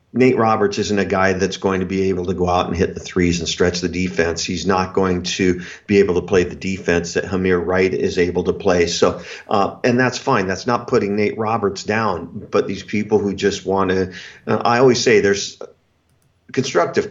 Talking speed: 220 wpm